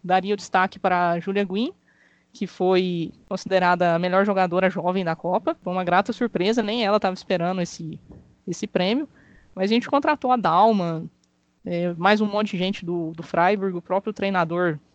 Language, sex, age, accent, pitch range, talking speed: Portuguese, female, 20-39, Brazilian, 180-240 Hz, 180 wpm